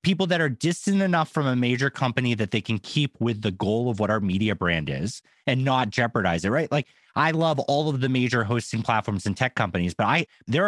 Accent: American